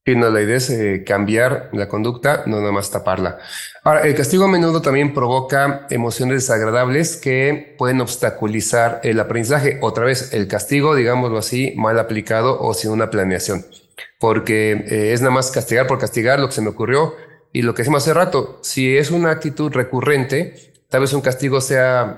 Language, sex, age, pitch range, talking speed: Spanish, male, 30-49, 115-145 Hz, 185 wpm